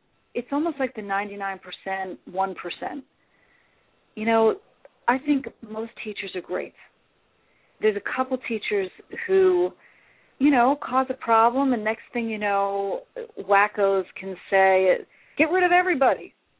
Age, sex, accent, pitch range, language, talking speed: 40-59, female, American, 200-270 Hz, English, 130 wpm